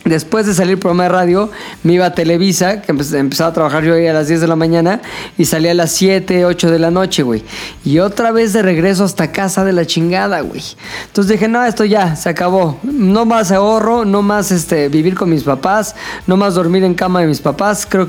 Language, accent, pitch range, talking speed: Spanish, Mexican, 165-205 Hz, 230 wpm